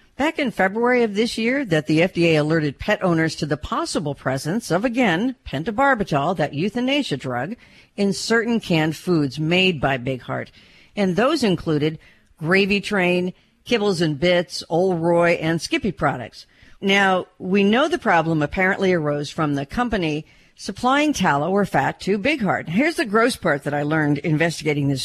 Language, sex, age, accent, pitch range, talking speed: English, female, 50-69, American, 150-205 Hz, 165 wpm